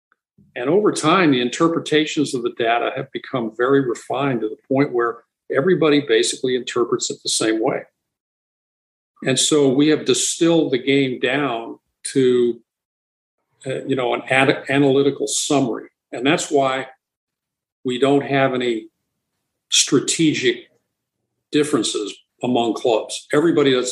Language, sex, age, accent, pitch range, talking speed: English, male, 50-69, American, 130-210 Hz, 130 wpm